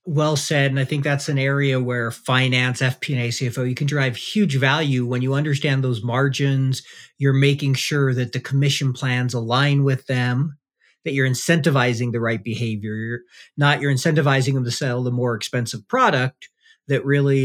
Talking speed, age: 175 wpm, 40-59